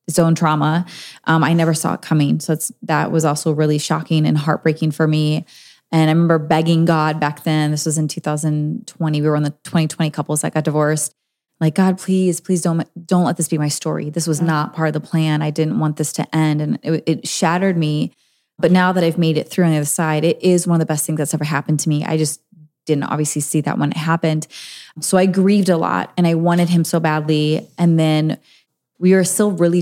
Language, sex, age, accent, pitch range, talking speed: English, female, 20-39, American, 155-170 Hz, 235 wpm